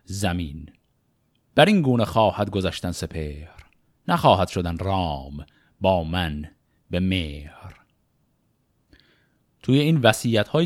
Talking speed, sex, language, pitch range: 100 wpm, male, Persian, 100-135 Hz